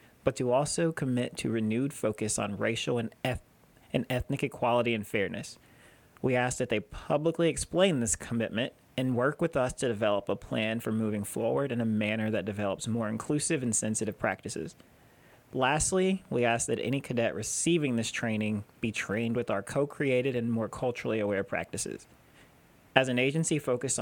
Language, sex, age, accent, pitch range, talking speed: English, male, 30-49, American, 110-135 Hz, 165 wpm